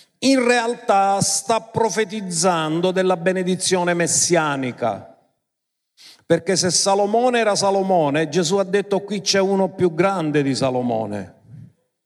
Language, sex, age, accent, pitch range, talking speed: Italian, male, 50-69, native, 145-195 Hz, 110 wpm